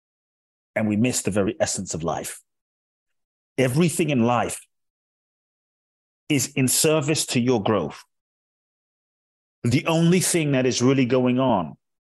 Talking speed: 125 wpm